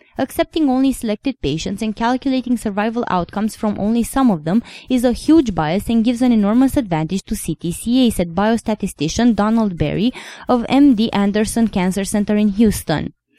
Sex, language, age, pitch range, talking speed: female, English, 20-39, 195-250 Hz, 155 wpm